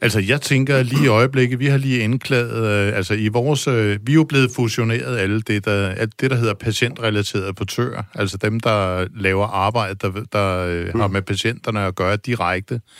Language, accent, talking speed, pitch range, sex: Danish, native, 200 wpm, 105-135 Hz, male